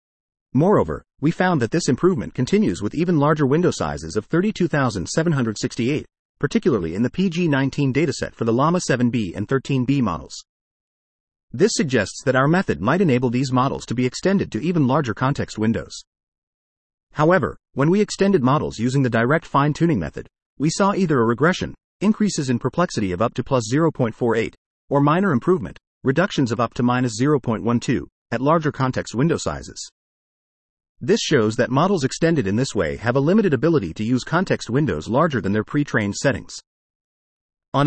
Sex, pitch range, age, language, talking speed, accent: male, 115-165 Hz, 40-59, English, 160 wpm, American